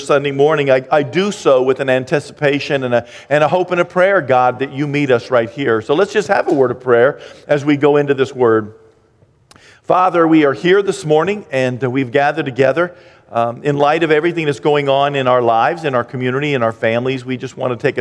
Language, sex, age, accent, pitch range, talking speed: English, male, 50-69, American, 120-145 Hz, 235 wpm